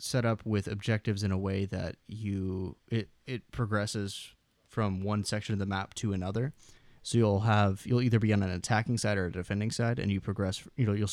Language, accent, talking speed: English, American, 215 wpm